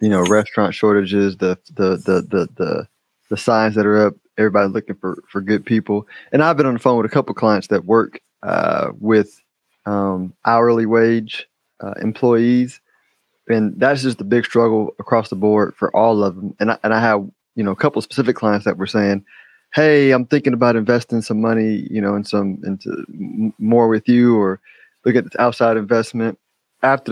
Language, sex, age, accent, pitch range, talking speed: English, male, 20-39, American, 105-125 Hz, 200 wpm